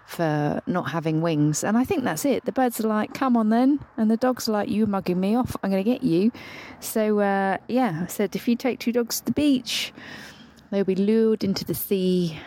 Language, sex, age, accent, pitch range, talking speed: English, female, 40-59, British, 155-250 Hz, 235 wpm